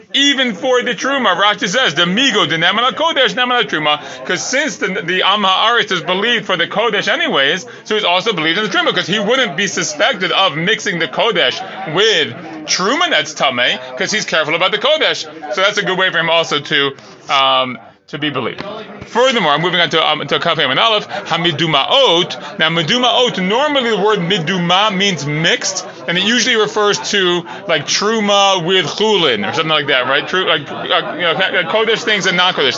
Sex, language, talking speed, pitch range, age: male, English, 190 wpm, 160-220 Hz, 30-49